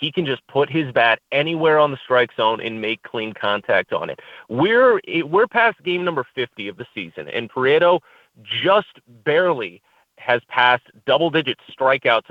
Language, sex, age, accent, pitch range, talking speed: English, male, 30-49, American, 125-165 Hz, 170 wpm